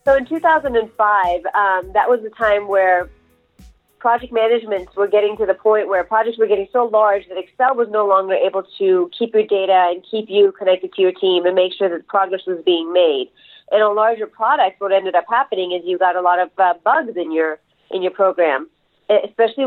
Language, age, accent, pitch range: English, 30-49, American, 180-220 Hz